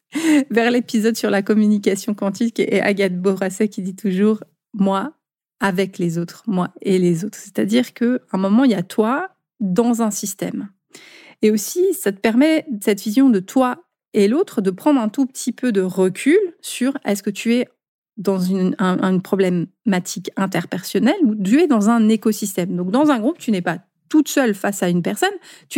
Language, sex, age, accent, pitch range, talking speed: French, female, 30-49, French, 195-255 Hz, 195 wpm